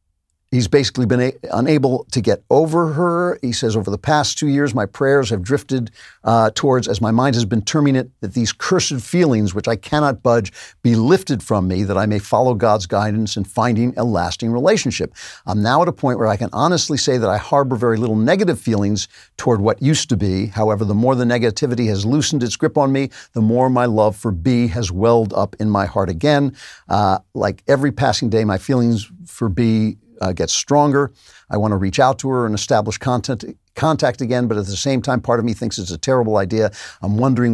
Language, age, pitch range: English, 50-69, 105-135 Hz